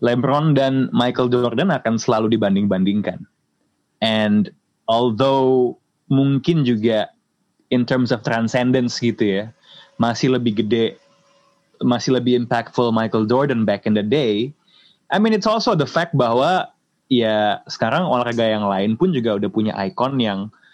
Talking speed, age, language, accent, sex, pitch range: 135 wpm, 20-39, Indonesian, native, male, 115-150 Hz